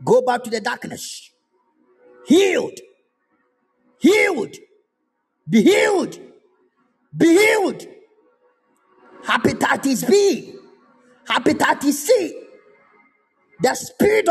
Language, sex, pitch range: Japanese, male, 310-395 Hz